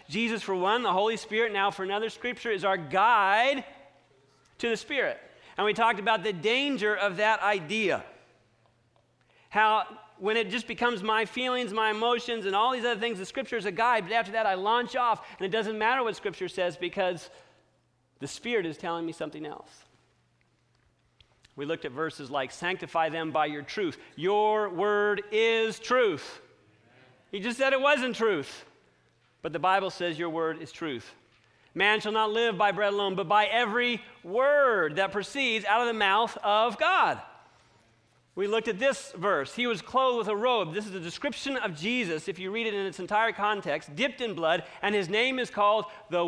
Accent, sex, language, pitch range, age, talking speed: American, male, English, 175-230 Hz, 40-59, 190 wpm